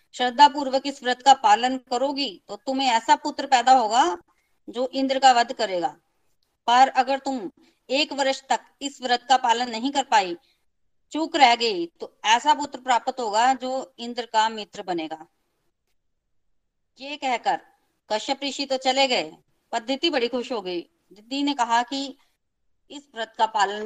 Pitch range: 220-275 Hz